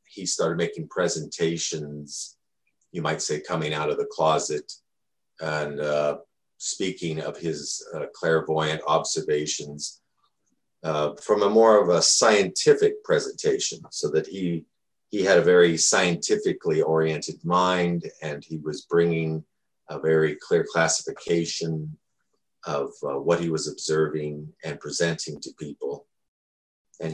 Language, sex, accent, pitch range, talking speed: English, male, American, 80-115 Hz, 125 wpm